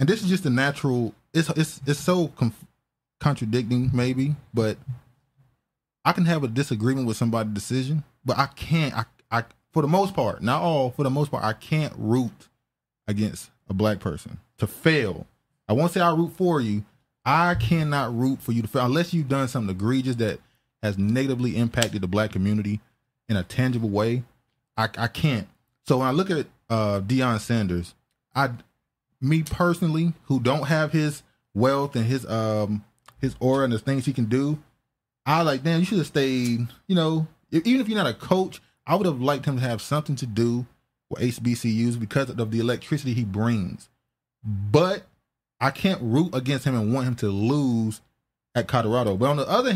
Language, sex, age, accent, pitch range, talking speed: English, male, 20-39, American, 115-145 Hz, 190 wpm